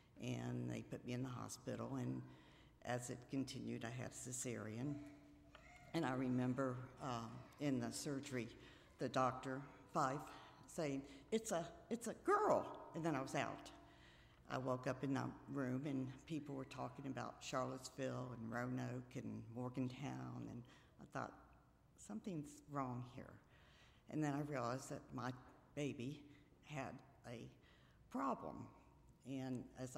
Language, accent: English, American